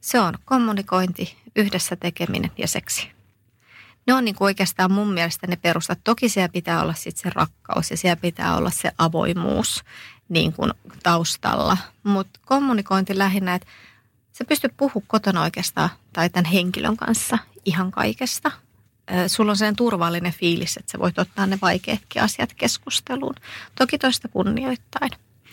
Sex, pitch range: female, 170-205 Hz